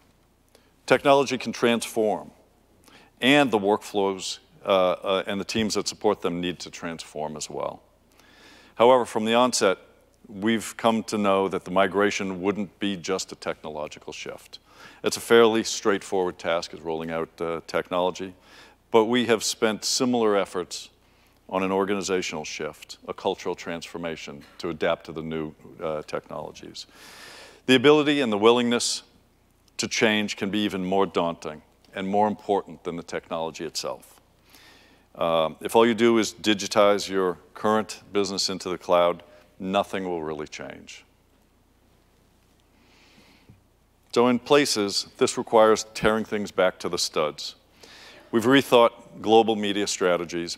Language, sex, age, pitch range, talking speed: English, male, 50-69, 90-115 Hz, 140 wpm